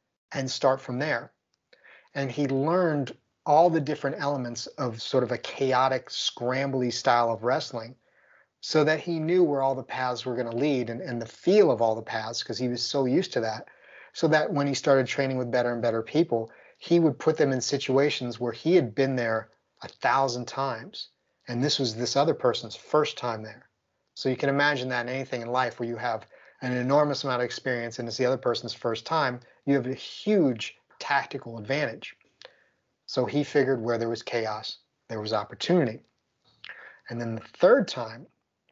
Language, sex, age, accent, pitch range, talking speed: English, male, 30-49, American, 120-140 Hz, 195 wpm